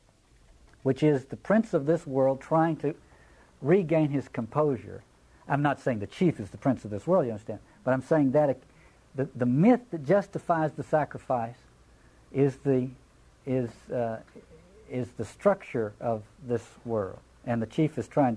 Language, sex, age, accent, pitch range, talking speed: English, male, 60-79, American, 105-155 Hz, 170 wpm